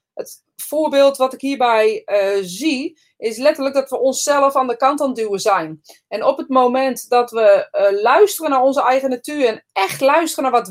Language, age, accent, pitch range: Dutch, 30-49, Dutch, 225-285 Hz